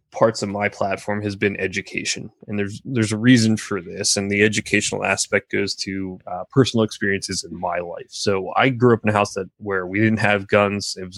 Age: 20-39